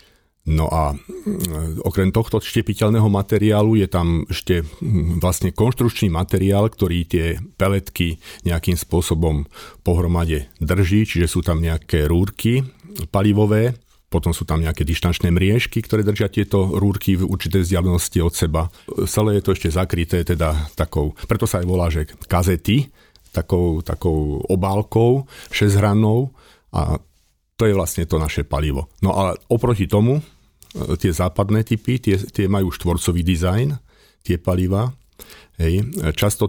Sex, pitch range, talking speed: male, 85-105 Hz, 135 wpm